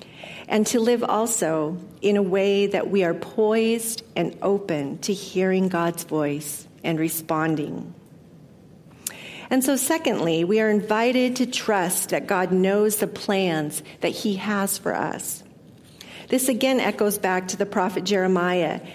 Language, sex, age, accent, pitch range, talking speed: English, female, 50-69, American, 170-210 Hz, 145 wpm